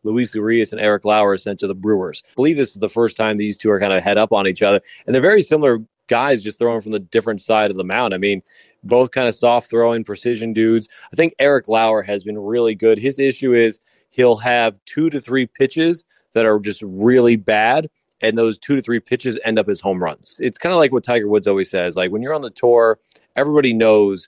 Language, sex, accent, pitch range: English, male, American, 105-125 Hz